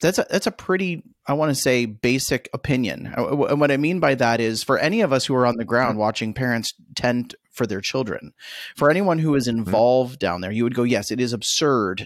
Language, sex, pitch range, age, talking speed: English, male, 115-150 Hz, 30-49, 230 wpm